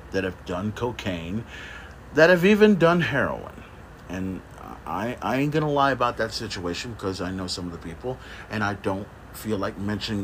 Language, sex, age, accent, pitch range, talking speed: English, male, 50-69, American, 90-130 Hz, 180 wpm